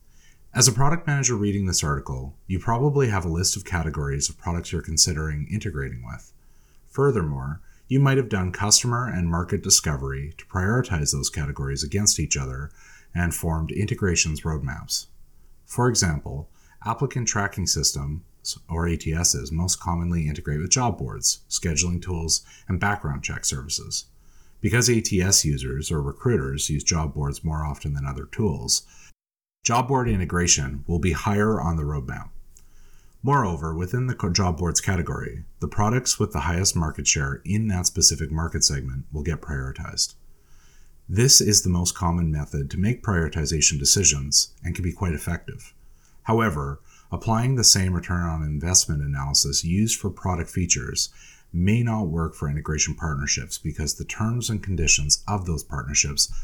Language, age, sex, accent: English, 30-49, male, American